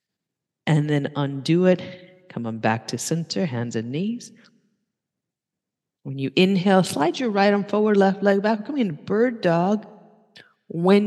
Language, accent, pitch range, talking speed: English, American, 140-200 Hz, 145 wpm